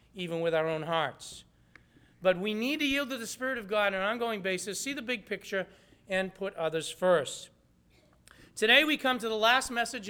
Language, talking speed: English, 200 wpm